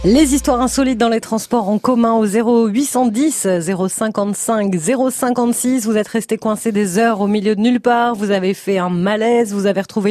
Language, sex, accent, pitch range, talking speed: French, female, French, 200-255 Hz, 185 wpm